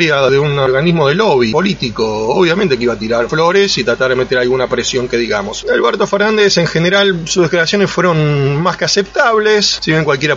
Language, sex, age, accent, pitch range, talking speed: Spanish, male, 30-49, Argentinian, 120-160 Hz, 190 wpm